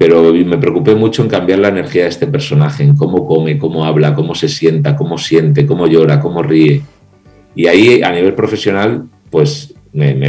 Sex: male